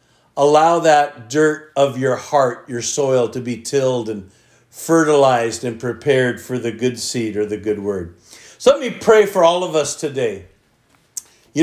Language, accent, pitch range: English, American, 130-175 Hz